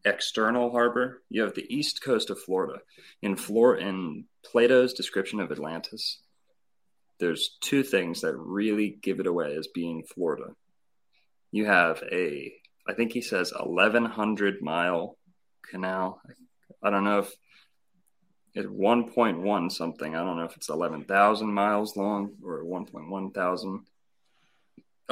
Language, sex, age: English, male, 30-49